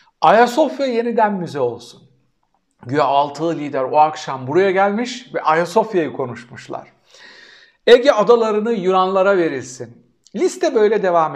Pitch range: 160-225 Hz